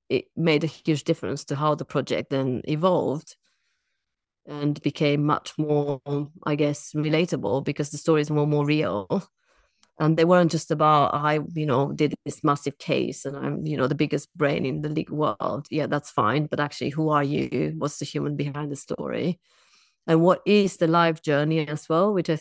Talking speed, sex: 190 wpm, female